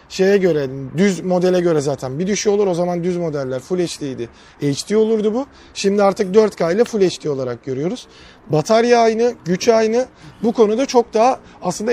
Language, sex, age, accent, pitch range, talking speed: Turkish, male, 40-59, native, 155-200 Hz, 175 wpm